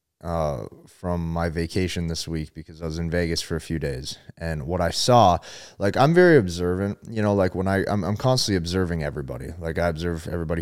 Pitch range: 85-100 Hz